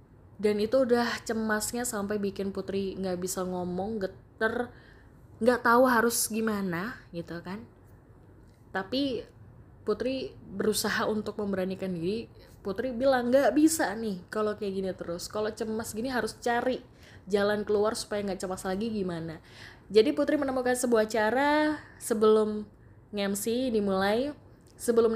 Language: Indonesian